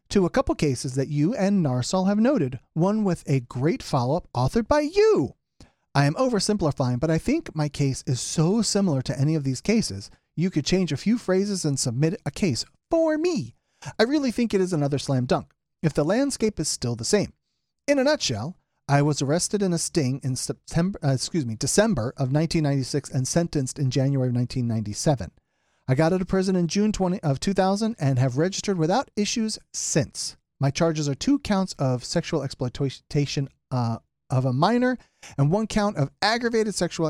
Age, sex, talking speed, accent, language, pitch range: 40-59, male, 190 wpm, American, English, 135-195 Hz